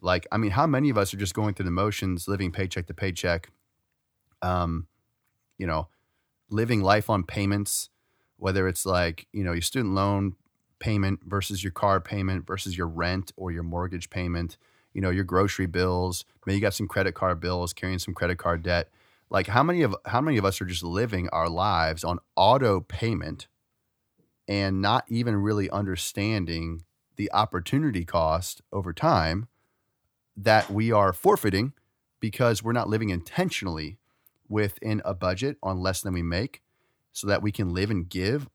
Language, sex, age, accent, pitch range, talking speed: English, male, 30-49, American, 90-110 Hz, 170 wpm